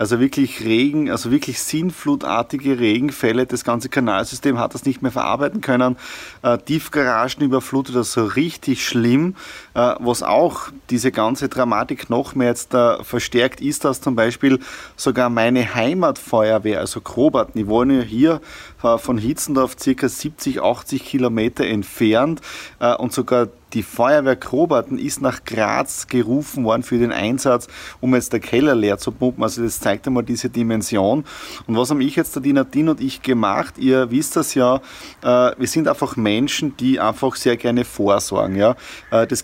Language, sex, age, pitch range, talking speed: German, male, 30-49, 120-140 Hz, 160 wpm